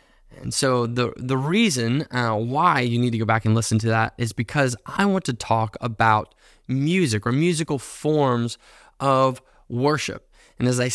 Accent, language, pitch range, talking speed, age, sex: American, English, 115-160 Hz, 175 wpm, 20-39, male